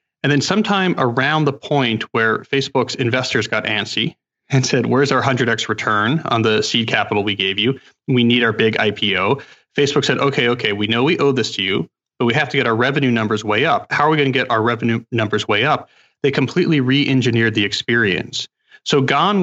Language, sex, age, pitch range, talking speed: English, male, 30-49, 110-140 Hz, 210 wpm